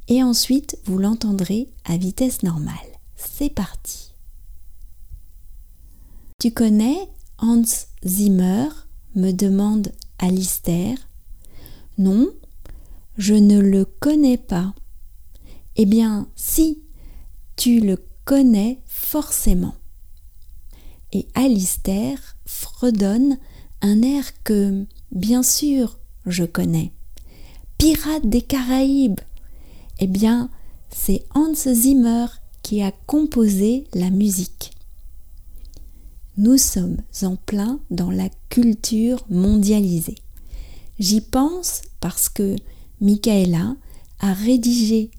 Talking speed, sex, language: 90 wpm, female, English